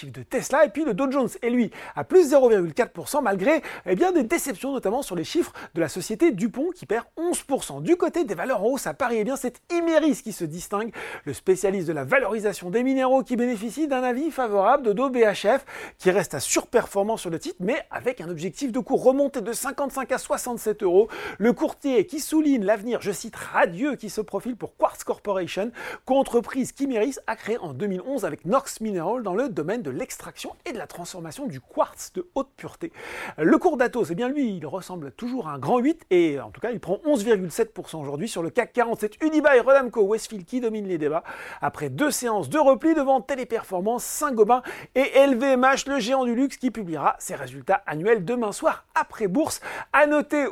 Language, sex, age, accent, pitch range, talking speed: French, male, 40-59, French, 195-270 Hz, 205 wpm